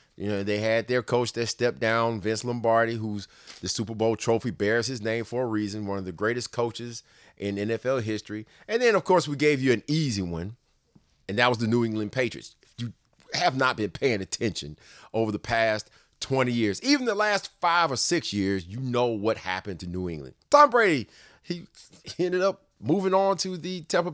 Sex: male